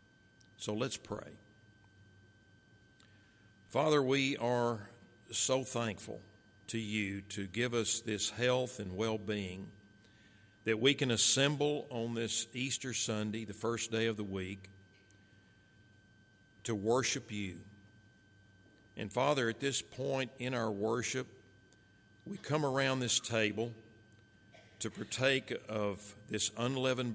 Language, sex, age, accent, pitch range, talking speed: English, male, 50-69, American, 105-120 Hz, 115 wpm